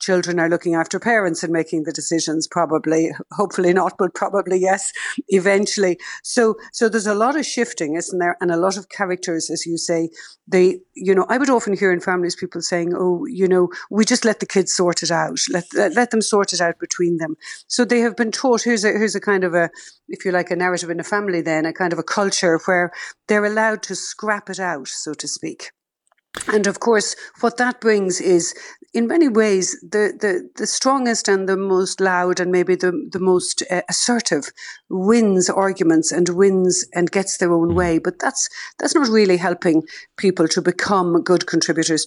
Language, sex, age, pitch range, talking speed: English, female, 60-79, 170-205 Hz, 205 wpm